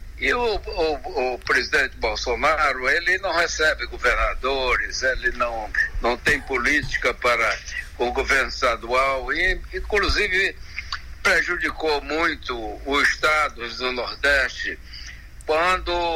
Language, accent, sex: Portuguese, Brazilian, male